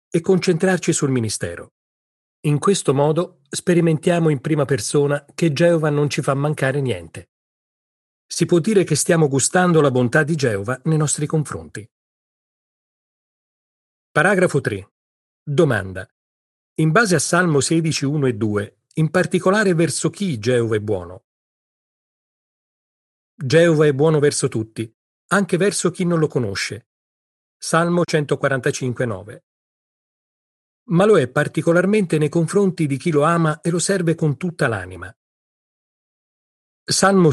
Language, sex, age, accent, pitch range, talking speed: Italian, male, 40-59, native, 125-170 Hz, 130 wpm